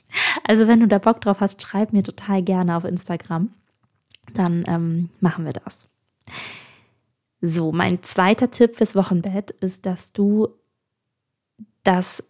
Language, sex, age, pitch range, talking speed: German, female, 20-39, 175-210 Hz, 135 wpm